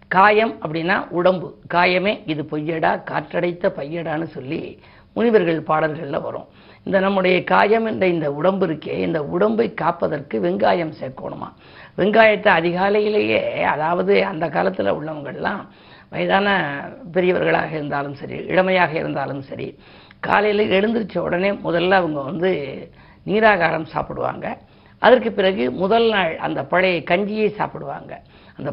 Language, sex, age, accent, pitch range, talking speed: Tamil, female, 50-69, native, 170-210 Hz, 115 wpm